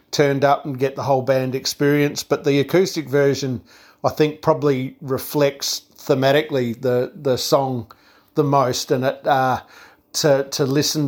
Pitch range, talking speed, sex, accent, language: 130-145 Hz, 150 wpm, male, Australian, English